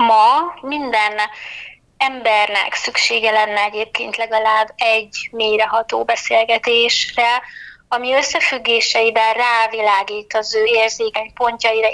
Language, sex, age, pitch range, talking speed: Hungarian, female, 20-39, 215-245 Hz, 85 wpm